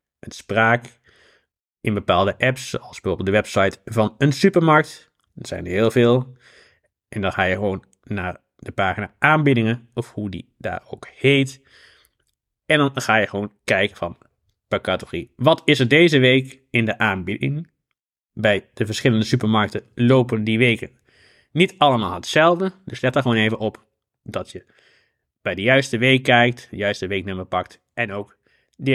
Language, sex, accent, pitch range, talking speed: Dutch, male, Dutch, 105-145 Hz, 165 wpm